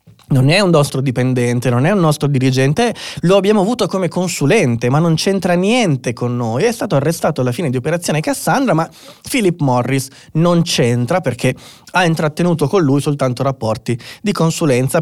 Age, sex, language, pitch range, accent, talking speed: 20-39, male, Italian, 125-165 Hz, native, 170 wpm